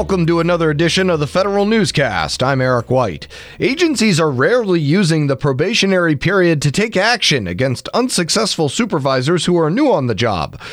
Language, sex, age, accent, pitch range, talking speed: English, male, 30-49, American, 140-185 Hz, 170 wpm